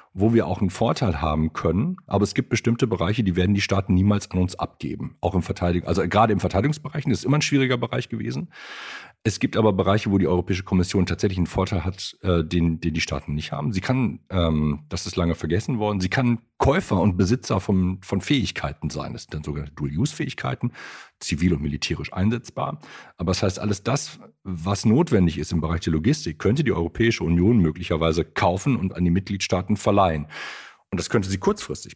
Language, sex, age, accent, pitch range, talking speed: German, male, 40-59, German, 85-110 Hz, 200 wpm